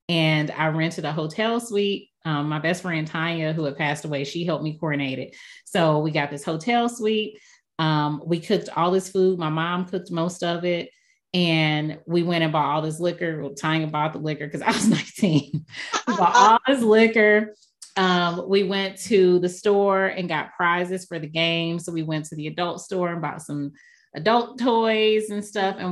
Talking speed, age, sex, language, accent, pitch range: 200 wpm, 30-49, female, English, American, 155-195 Hz